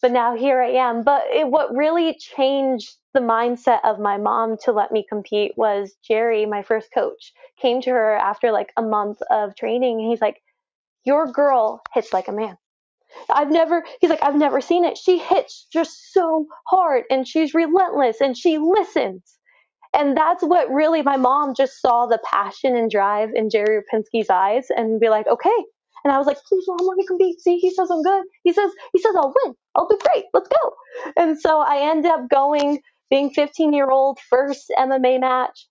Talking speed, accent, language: 195 wpm, American, English